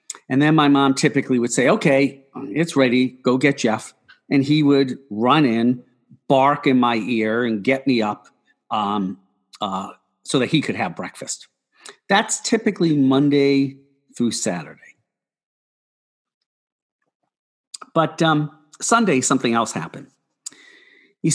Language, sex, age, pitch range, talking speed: English, male, 50-69, 115-155 Hz, 130 wpm